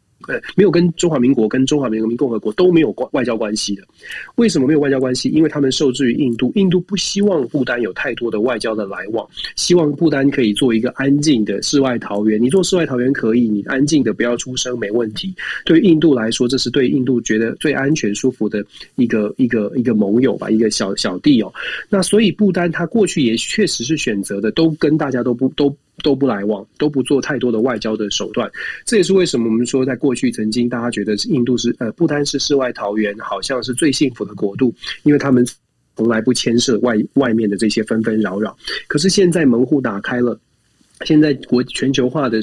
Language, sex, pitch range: Chinese, male, 115-160 Hz